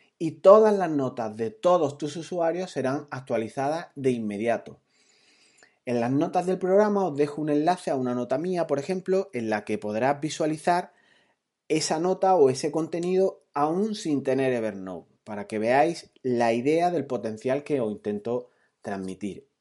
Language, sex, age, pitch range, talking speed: Spanish, male, 30-49, 120-170 Hz, 160 wpm